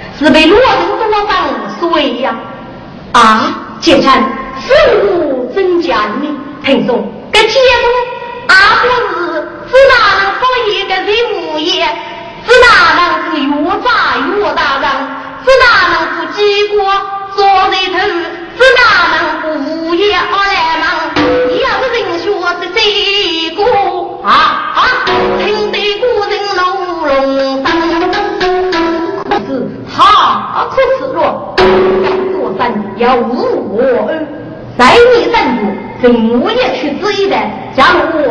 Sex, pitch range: female, 280-415 Hz